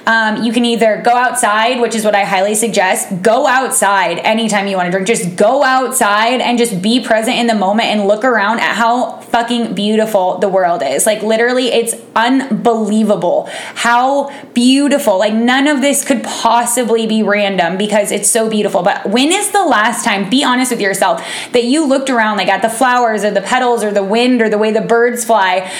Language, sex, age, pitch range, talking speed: English, female, 20-39, 210-250 Hz, 200 wpm